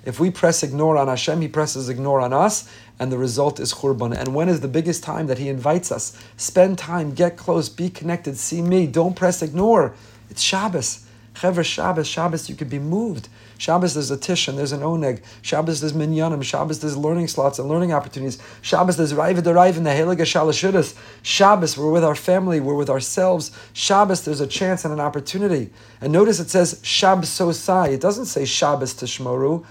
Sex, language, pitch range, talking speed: male, English, 135-180 Hz, 190 wpm